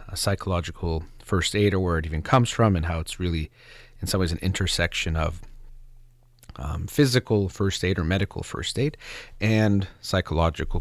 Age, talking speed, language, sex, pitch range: 40-59, 165 wpm, English, male, 85-110 Hz